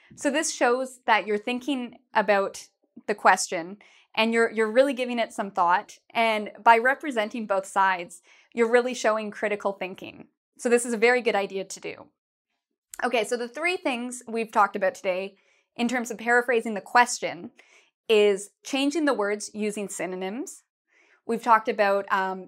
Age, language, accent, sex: 20-39, English, American, female